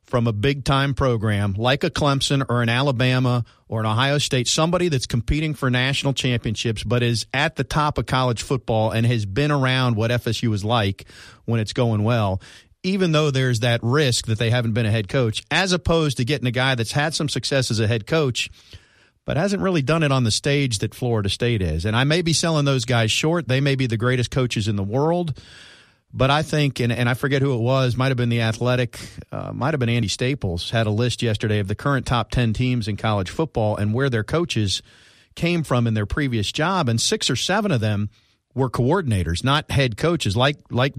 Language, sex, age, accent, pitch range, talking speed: English, male, 50-69, American, 115-135 Hz, 225 wpm